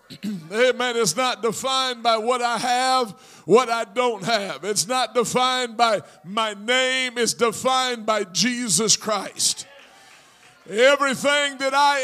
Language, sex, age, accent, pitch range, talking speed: English, male, 50-69, American, 210-260 Hz, 130 wpm